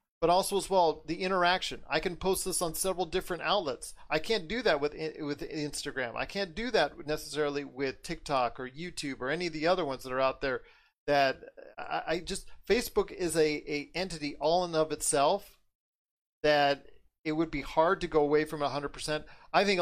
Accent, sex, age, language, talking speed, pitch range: American, male, 40-59, English, 195 wpm, 140-175 Hz